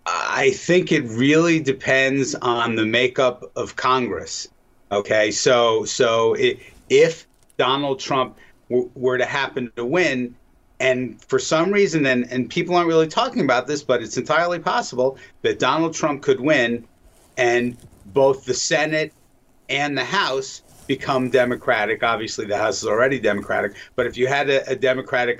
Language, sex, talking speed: English, male, 155 wpm